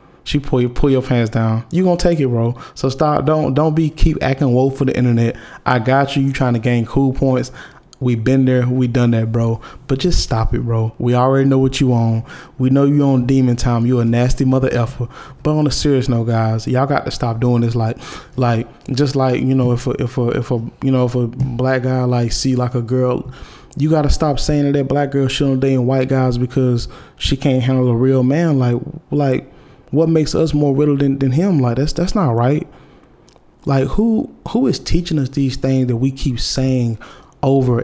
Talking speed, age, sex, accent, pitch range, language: 230 wpm, 20-39, male, American, 125-140 Hz, English